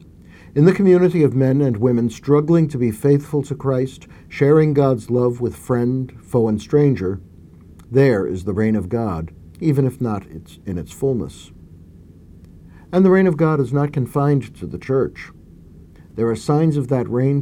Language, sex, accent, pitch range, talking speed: English, male, American, 85-135 Hz, 170 wpm